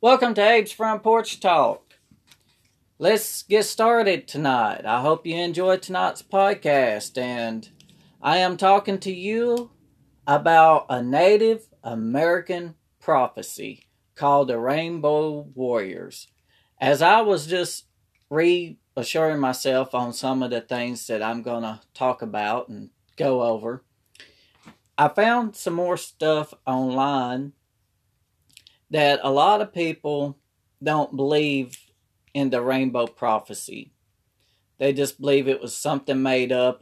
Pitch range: 115-170 Hz